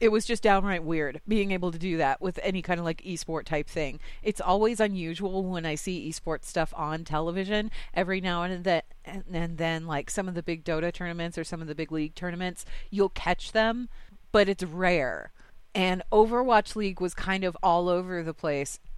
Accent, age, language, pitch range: American, 30-49, English, 165-210 Hz